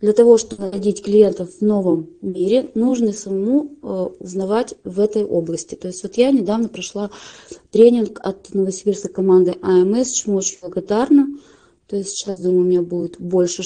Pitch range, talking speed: 185-230 Hz, 160 wpm